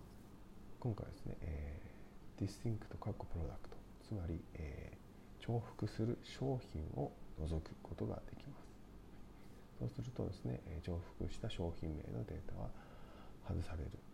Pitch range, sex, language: 85-110 Hz, male, Japanese